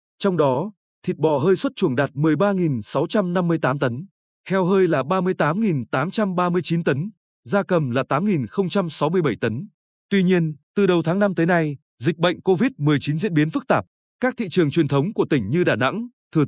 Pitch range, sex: 145-200 Hz, male